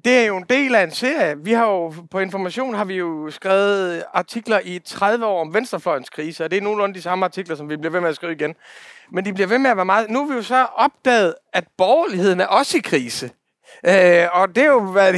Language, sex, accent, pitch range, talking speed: Danish, male, native, 175-235 Hz, 255 wpm